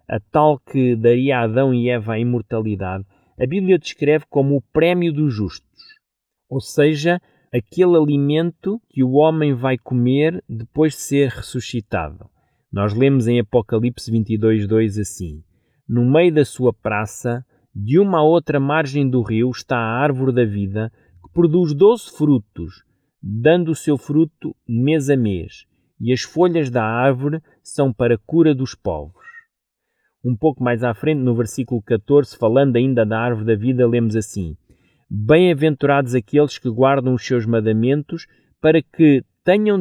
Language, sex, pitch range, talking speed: Portuguese, male, 115-150 Hz, 155 wpm